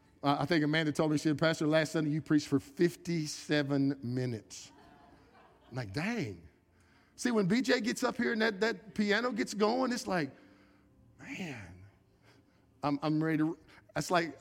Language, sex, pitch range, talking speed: English, male, 135-220 Hz, 160 wpm